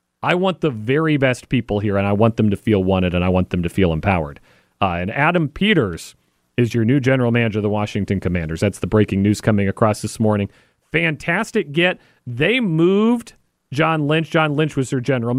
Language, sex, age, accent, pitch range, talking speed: English, male, 40-59, American, 105-155 Hz, 205 wpm